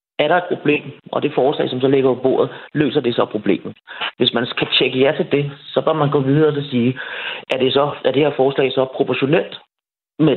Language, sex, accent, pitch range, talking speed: Danish, male, native, 120-145 Hz, 230 wpm